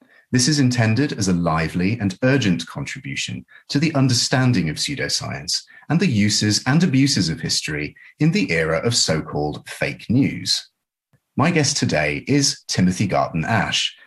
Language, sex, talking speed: English, male, 150 wpm